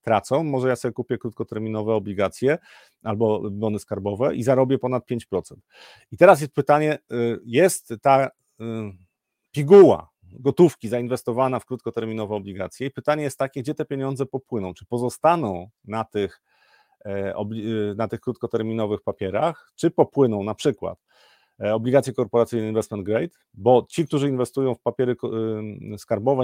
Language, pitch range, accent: Polish, 110-135 Hz, native